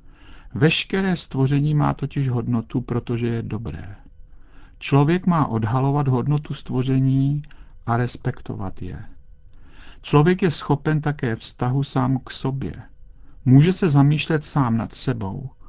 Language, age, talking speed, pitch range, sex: Czech, 50-69, 115 wpm, 115-145 Hz, male